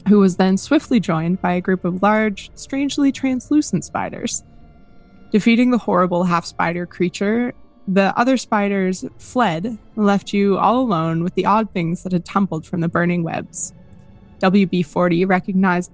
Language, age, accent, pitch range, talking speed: English, 20-39, American, 180-230 Hz, 145 wpm